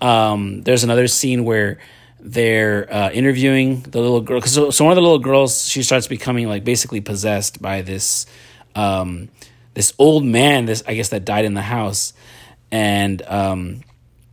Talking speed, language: 170 wpm, English